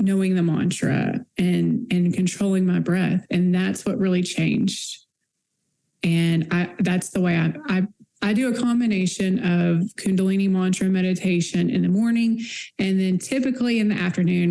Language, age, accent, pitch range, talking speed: English, 20-39, American, 175-205 Hz, 155 wpm